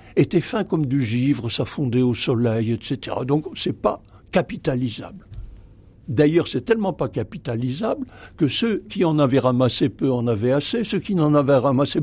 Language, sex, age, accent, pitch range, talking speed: French, male, 60-79, French, 125-165 Hz, 175 wpm